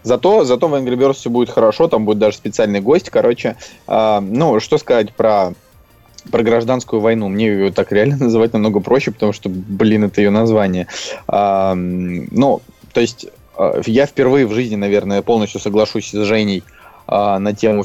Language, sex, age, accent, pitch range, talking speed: Russian, male, 20-39, native, 100-120 Hz, 175 wpm